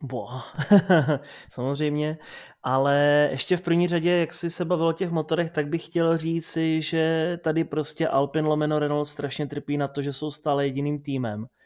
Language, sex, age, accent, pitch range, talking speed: Czech, male, 20-39, native, 135-160 Hz, 170 wpm